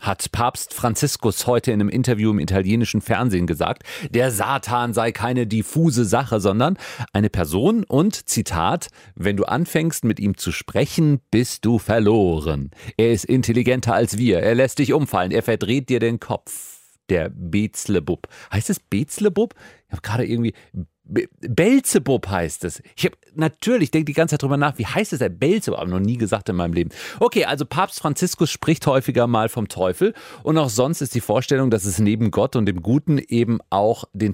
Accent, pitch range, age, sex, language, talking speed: German, 105-140 Hz, 40-59, male, German, 185 wpm